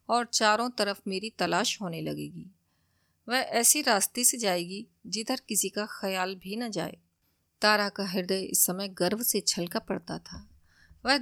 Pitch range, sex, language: 175-230 Hz, female, Hindi